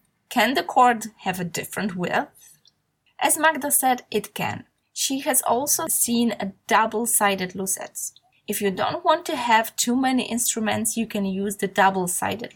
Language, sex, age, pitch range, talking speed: Polish, female, 20-39, 205-250 Hz, 160 wpm